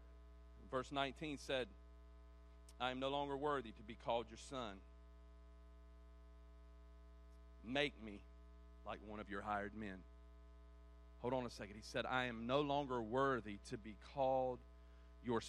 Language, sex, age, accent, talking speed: English, male, 40-59, American, 140 wpm